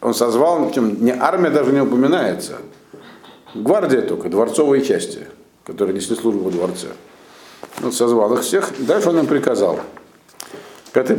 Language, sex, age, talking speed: Russian, male, 50-69, 140 wpm